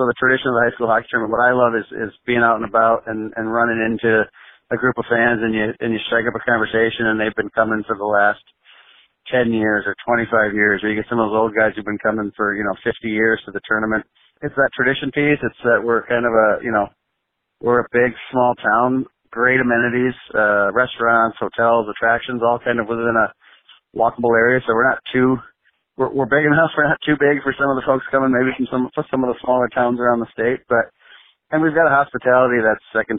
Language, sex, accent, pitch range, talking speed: English, male, American, 105-120 Hz, 240 wpm